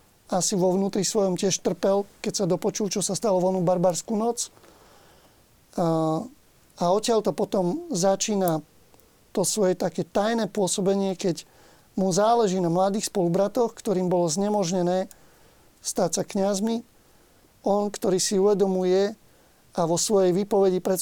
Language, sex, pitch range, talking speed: Slovak, male, 180-205 Hz, 135 wpm